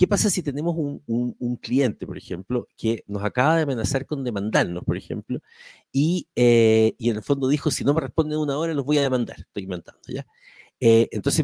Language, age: Spanish, 50-69